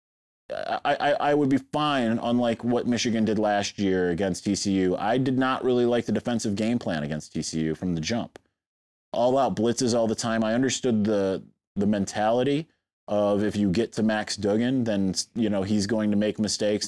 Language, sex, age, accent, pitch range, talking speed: English, male, 30-49, American, 100-130 Hz, 190 wpm